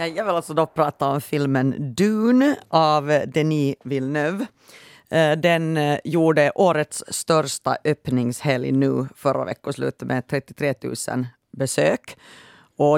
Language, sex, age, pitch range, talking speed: Swedish, female, 30-49, 135-160 Hz, 110 wpm